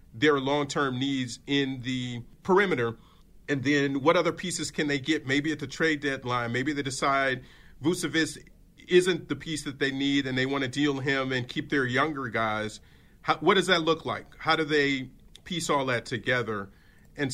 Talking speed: 185 wpm